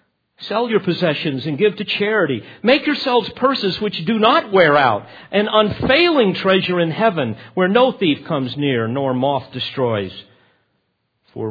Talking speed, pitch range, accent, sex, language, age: 150 wpm, 130-190 Hz, American, male, English, 50-69